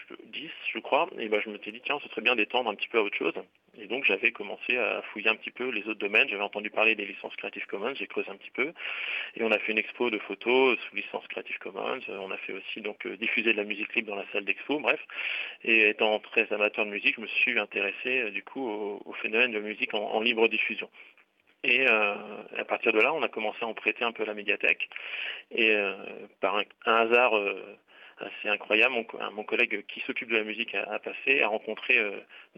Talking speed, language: 245 wpm, French